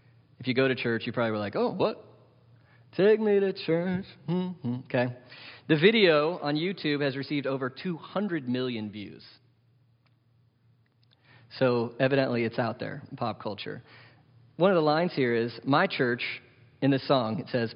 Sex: male